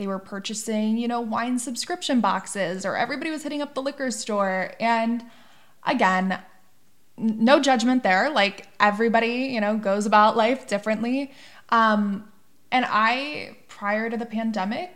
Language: English